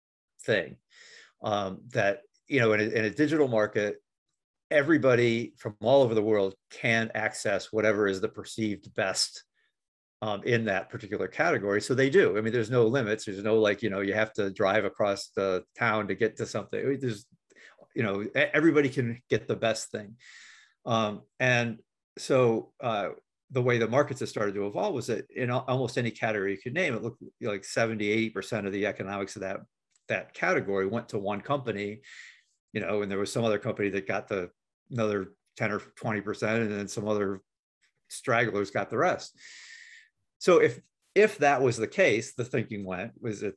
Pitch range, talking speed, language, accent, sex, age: 105-130 Hz, 185 wpm, English, American, male, 50-69